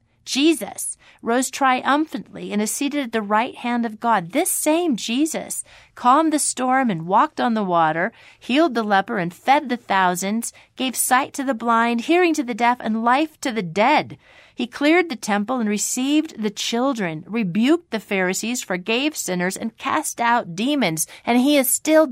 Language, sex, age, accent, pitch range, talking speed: English, female, 40-59, American, 195-270 Hz, 175 wpm